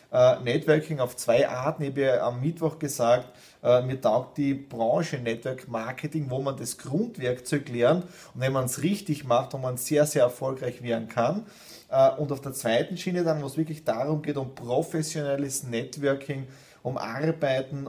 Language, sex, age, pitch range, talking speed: German, male, 30-49, 130-160 Hz, 170 wpm